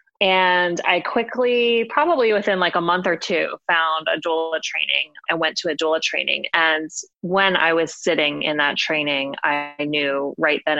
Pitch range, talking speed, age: 155-180 Hz, 180 wpm, 20-39